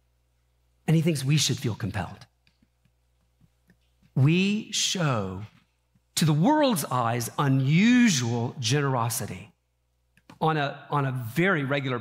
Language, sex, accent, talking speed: English, male, American, 105 wpm